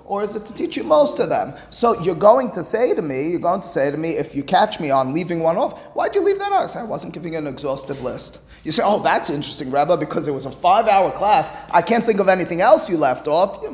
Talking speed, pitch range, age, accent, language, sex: 290 wpm, 145-195 Hz, 30-49, American, English, male